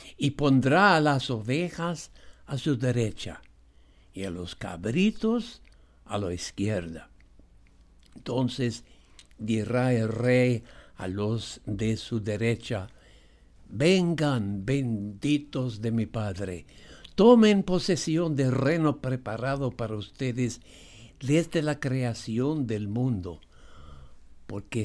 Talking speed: 100 wpm